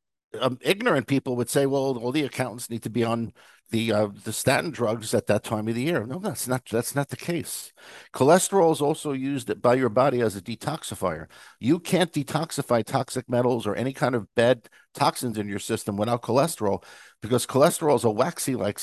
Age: 50-69